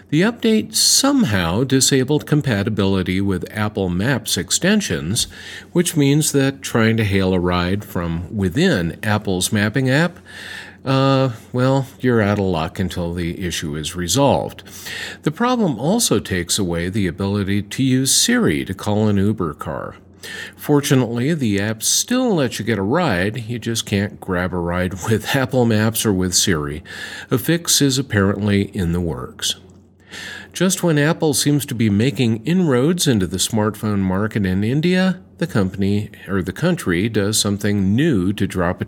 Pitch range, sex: 95-135 Hz, male